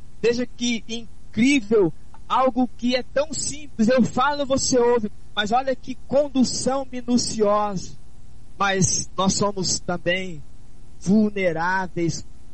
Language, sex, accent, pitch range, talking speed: Portuguese, male, Brazilian, 160-190 Hz, 105 wpm